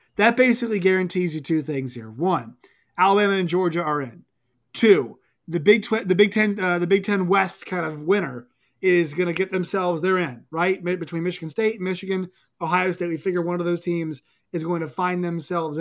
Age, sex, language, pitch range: 30-49, male, English, 160-205 Hz